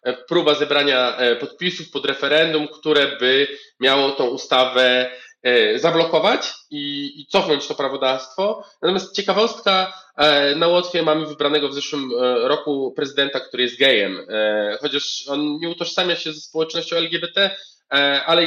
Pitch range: 140-170 Hz